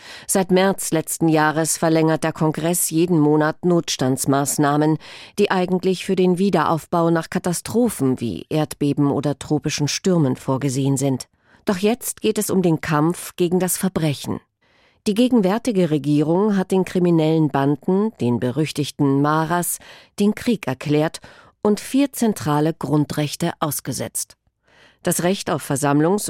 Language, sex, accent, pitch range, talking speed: German, female, German, 145-185 Hz, 130 wpm